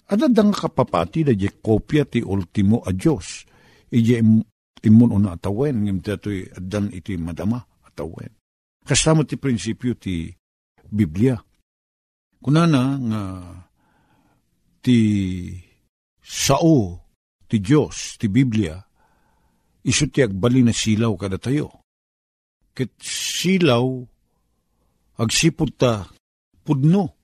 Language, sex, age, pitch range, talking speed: Filipino, male, 50-69, 100-145 Hz, 100 wpm